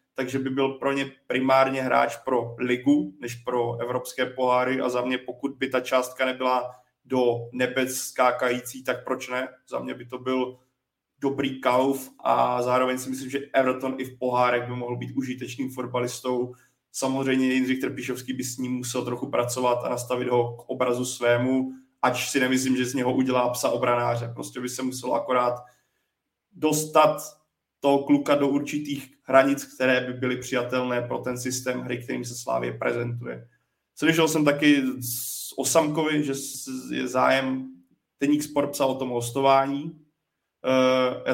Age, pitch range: 20-39, 125-130 Hz